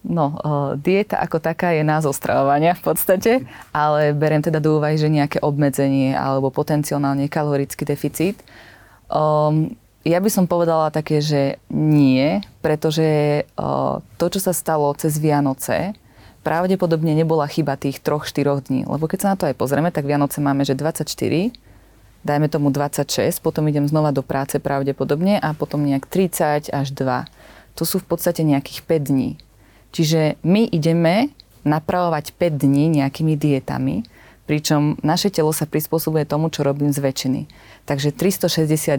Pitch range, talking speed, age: 140-165 Hz, 150 wpm, 30-49